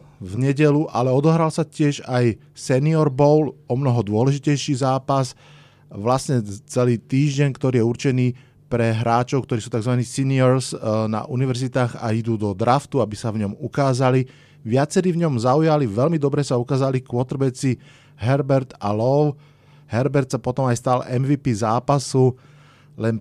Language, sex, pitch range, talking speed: Slovak, male, 115-145 Hz, 145 wpm